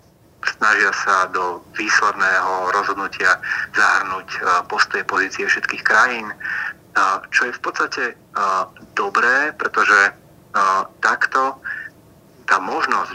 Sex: male